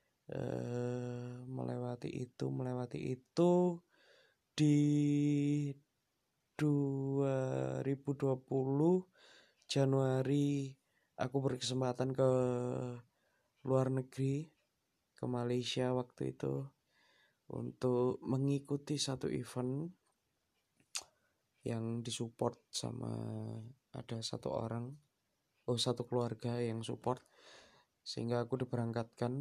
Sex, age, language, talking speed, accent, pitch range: male, 20-39, Indonesian, 70 wpm, native, 120-135 Hz